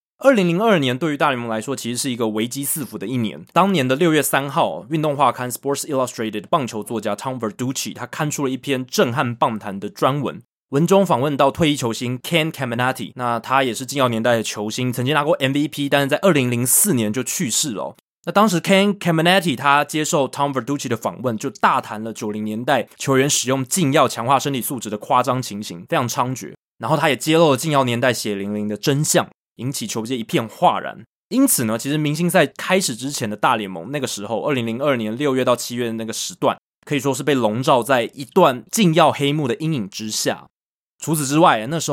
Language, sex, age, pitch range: Chinese, male, 20-39, 120-150 Hz